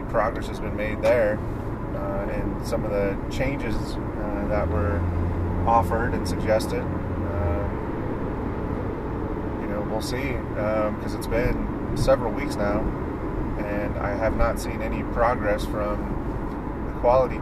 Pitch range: 85-105 Hz